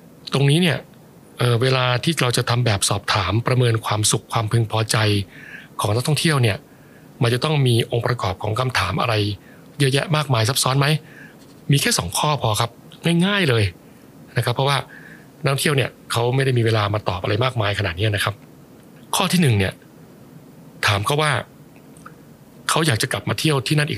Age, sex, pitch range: 60-79, male, 110-140 Hz